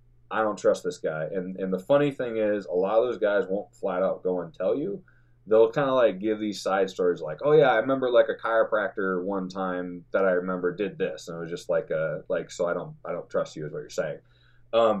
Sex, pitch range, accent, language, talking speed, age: male, 95-140 Hz, American, English, 260 wpm, 20-39